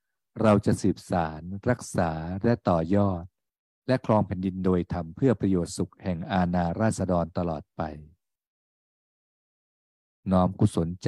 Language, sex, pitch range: Thai, male, 85-100 Hz